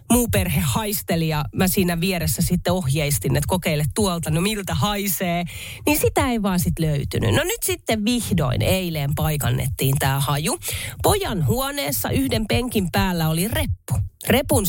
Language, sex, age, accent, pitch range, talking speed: Finnish, female, 30-49, native, 135-205 Hz, 150 wpm